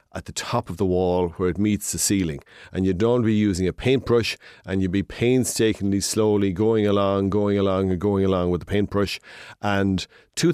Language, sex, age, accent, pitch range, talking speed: English, male, 40-59, Irish, 95-115 Hz, 205 wpm